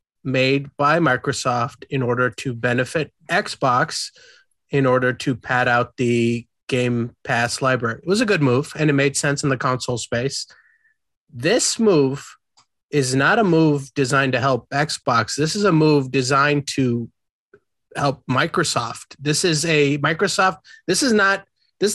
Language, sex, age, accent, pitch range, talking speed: English, male, 30-49, American, 135-180 Hz, 155 wpm